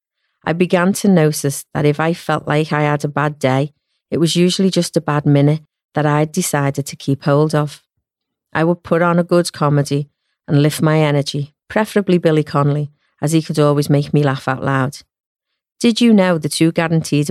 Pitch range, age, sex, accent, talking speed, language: 145-165 Hz, 40-59, female, British, 200 wpm, English